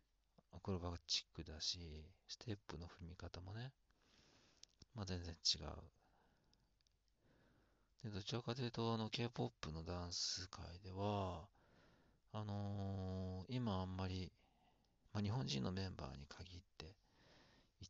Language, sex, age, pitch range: Japanese, male, 50-69, 85-100 Hz